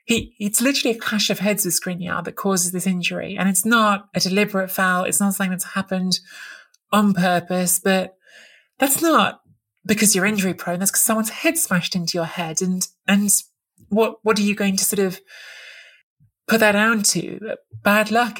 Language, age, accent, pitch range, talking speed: English, 30-49, British, 175-200 Hz, 185 wpm